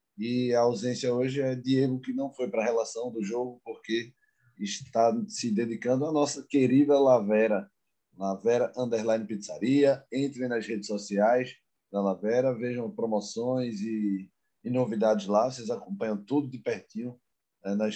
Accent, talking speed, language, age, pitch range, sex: Brazilian, 145 wpm, Portuguese, 20-39, 110-135 Hz, male